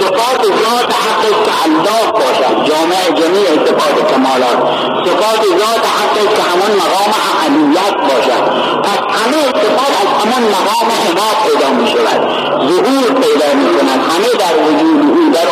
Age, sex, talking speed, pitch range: 50-69, male, 110 wpm, 195-320 Hz